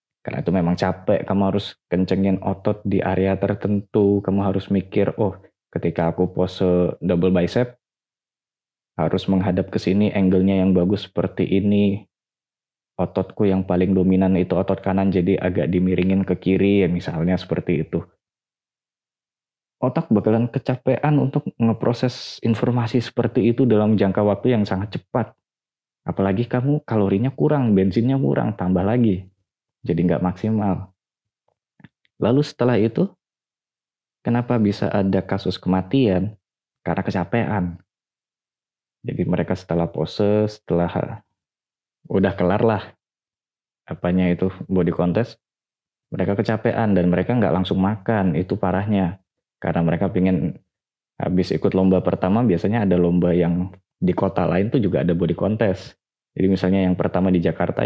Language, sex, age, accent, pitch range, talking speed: Indonesian, male, 20-39, native, 90-110 Hz, 130 wpm